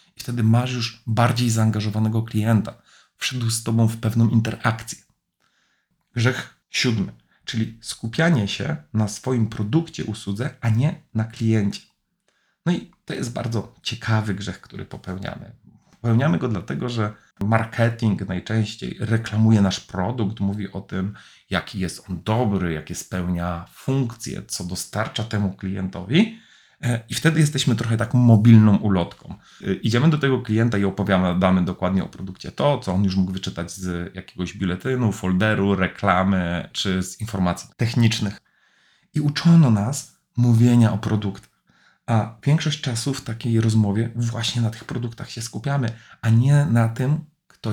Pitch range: 100-120 Hz